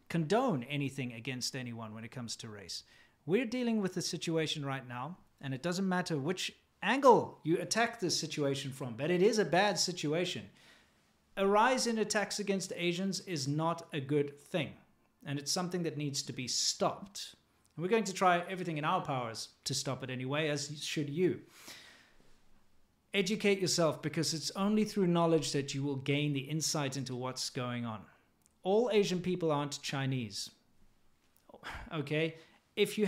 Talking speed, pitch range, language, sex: 165 wpm, 140-185 Hz, English, male